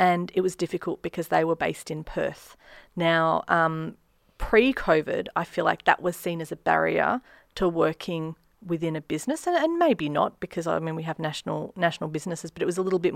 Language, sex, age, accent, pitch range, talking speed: English, female, 30-49, Australian, 165-195 Hz, 205 wpm